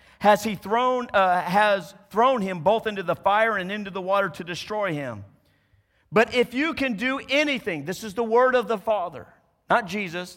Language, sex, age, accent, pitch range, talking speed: English, male, 50-69, American, 150-230 Hz, 180 wpm